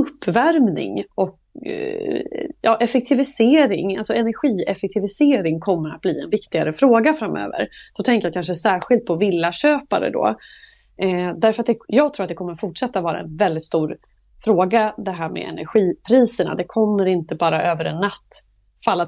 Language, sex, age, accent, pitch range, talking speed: English, female, 30-49, Swedish, 175-245 Hz, 155 wpm